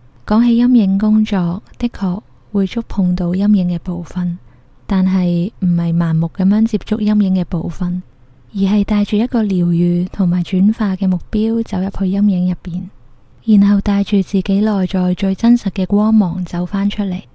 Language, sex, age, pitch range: Chinese, female, 20-39, 175-210 Hz